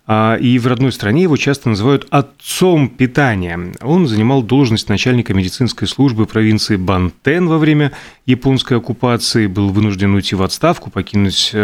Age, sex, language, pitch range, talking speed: 30-49, male, Russian, 105-130 Hz, 145 wpm